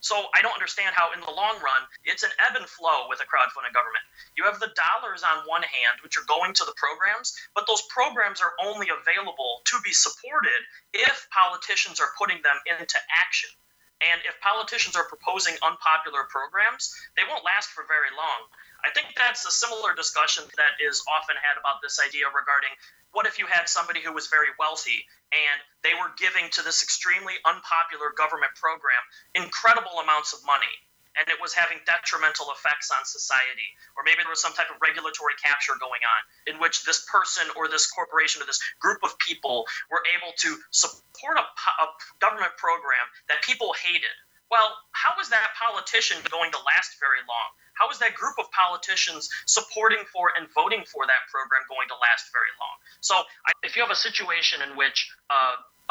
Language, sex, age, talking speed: English, male, 30-49, 190 wpm